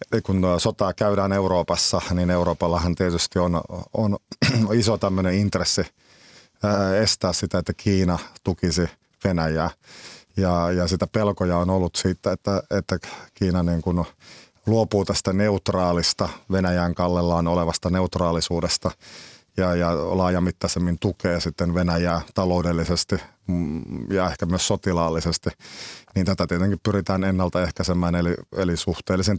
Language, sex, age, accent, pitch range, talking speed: Finnish, male, 30-49, native, 85-95 Hz, 110 wpm